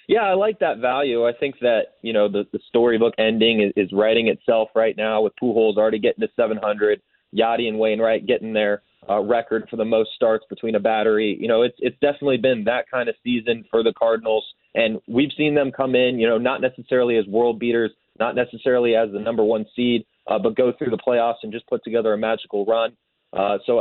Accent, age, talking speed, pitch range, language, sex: American, 20-39, 220 wpm, 110-125 Hz, English, male